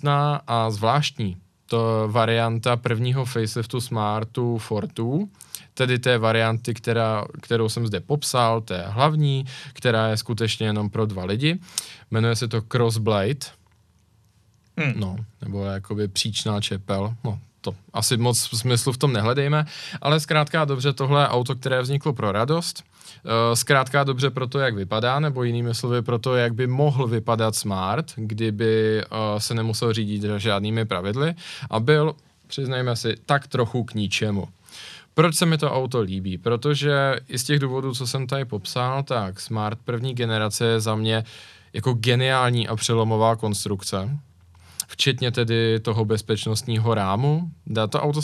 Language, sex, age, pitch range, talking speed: Czech, male, 20-39, 110-135 Hz, 145 wpm